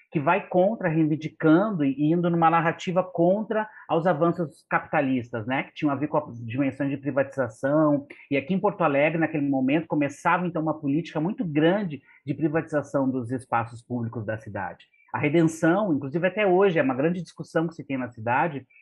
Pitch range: 140-165 Hz